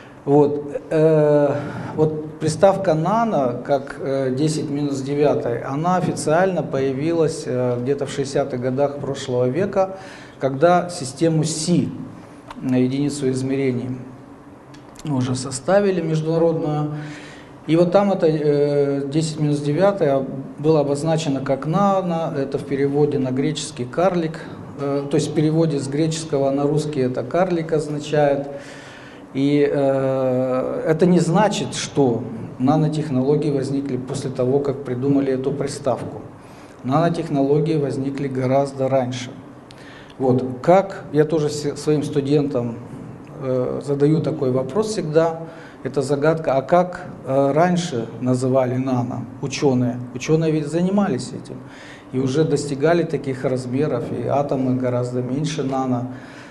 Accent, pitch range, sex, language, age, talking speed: native, 135-155 Hz, male, Russian, 40-59, 115 wpm